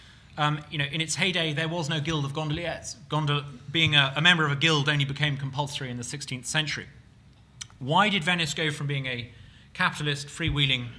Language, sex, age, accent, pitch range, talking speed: English, male, 30-49, British, 125-160 Hz, 195 wpm